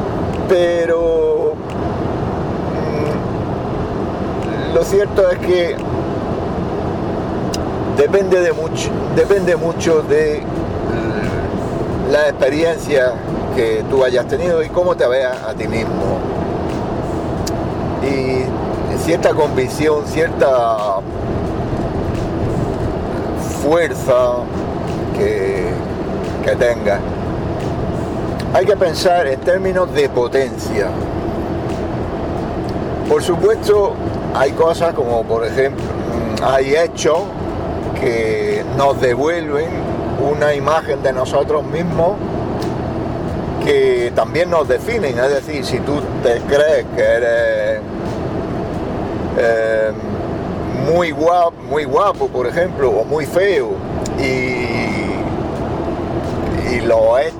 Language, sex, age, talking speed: Spanish, male, 50-69, 85 wpm